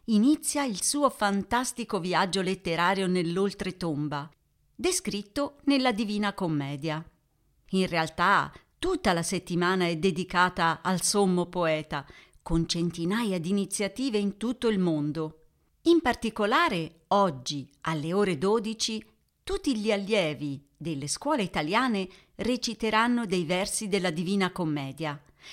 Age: 50-69